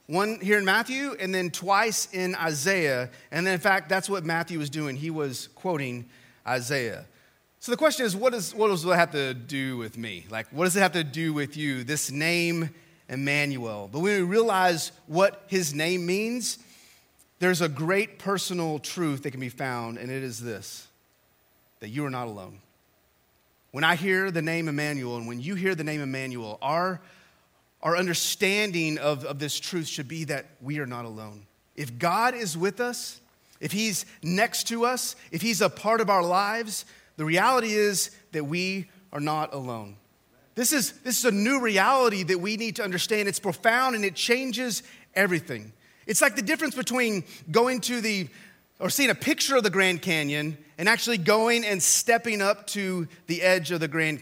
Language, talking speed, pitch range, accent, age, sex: English, 190 wpm, 150-210 Hz, American, 30-49, male